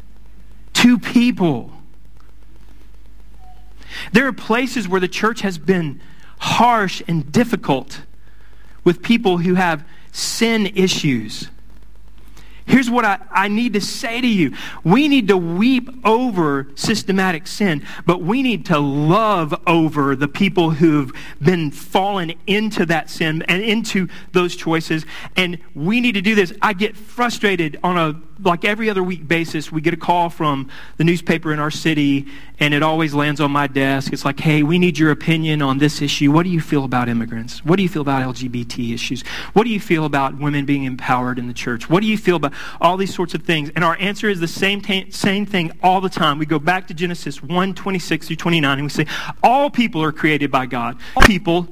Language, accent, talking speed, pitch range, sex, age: English, American, 185 wpm, 150-200 Hz, male, 40-59